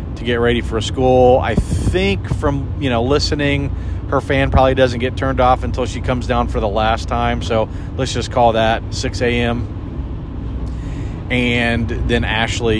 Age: 40-59